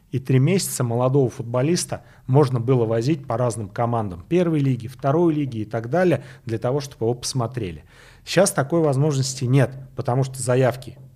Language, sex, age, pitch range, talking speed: Russian, male, 30-49, 115-140 Hz, 160 wpm